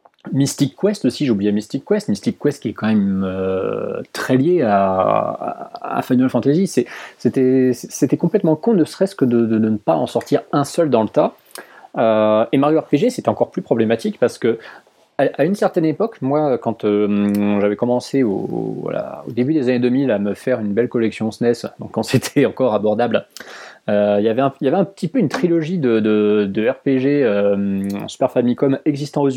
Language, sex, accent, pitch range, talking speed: French, male, French, 105-145 Hz, 200 wpm